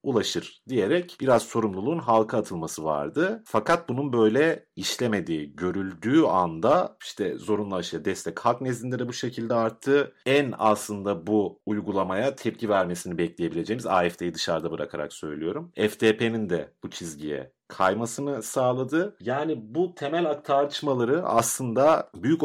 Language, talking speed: Turkish, 125 wpm